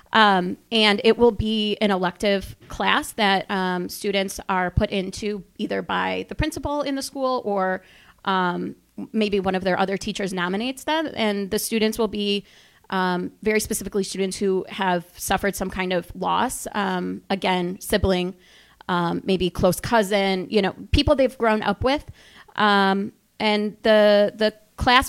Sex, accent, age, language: female, American, 30-49, English